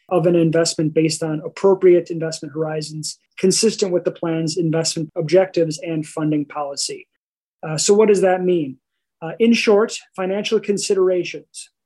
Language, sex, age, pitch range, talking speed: English, male, 30-49, 165-195 Hz, 140 wpm